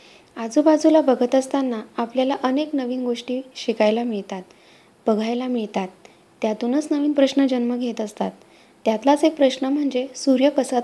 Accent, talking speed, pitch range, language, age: native, 120 wpm, 220-270 Hz, Marathi, 20-39